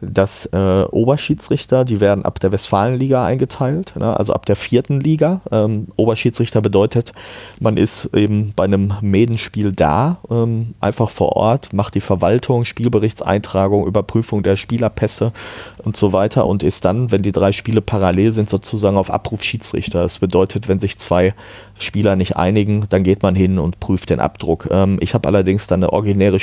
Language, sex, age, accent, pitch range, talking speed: German, male, 30-49, German, 95-110 Hz, 170 wpm